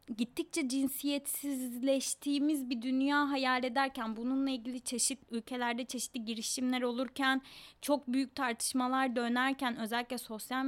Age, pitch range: 20-39, 245-300 Hz